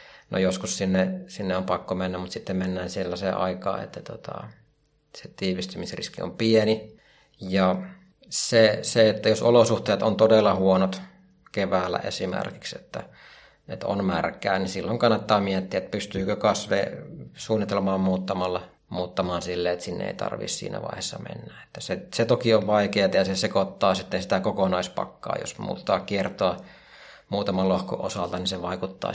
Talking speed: 145 wpm